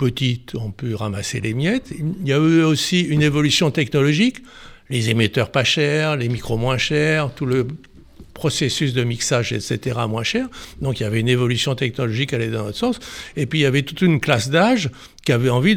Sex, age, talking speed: male, 60-79, 205 wpm